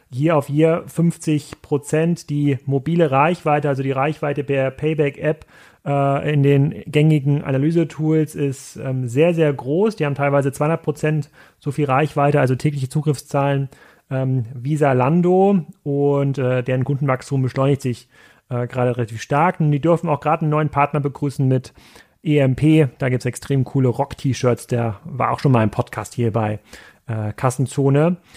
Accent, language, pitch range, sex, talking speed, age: German, German, 130-155 Hz, male, 160 wpm, 30-49